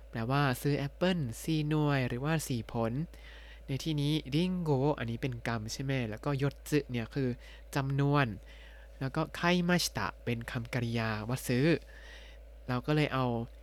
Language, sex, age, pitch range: Thai, male, 20-39, 120-150 Hz